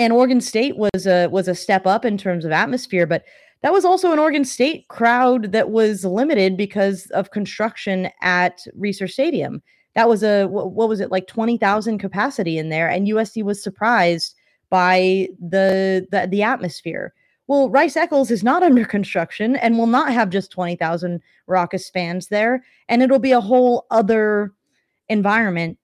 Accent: American